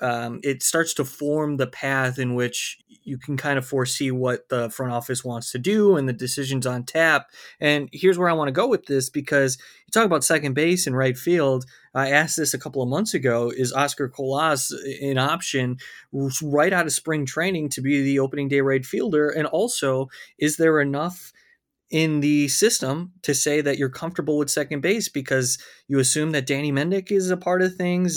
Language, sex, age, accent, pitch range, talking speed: English, male, 20-39, American, 130-160 Hz, 205 wpm